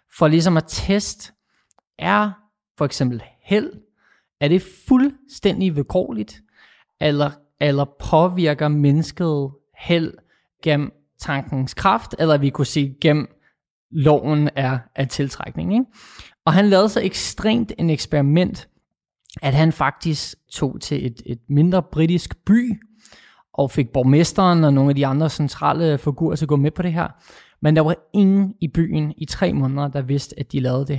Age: 20-39